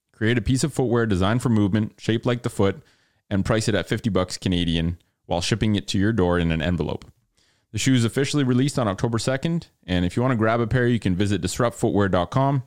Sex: male